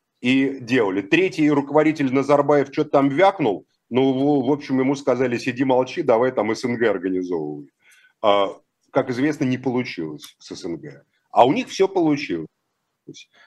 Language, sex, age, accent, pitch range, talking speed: Russian, male, 40-59, native, 125-150 Hz, 135 wpm